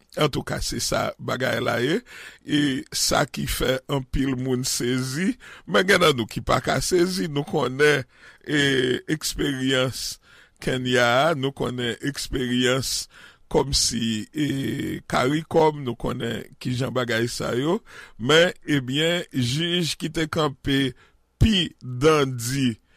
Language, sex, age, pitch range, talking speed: English, male, 60-79, 120-155 Hz, 120 wpm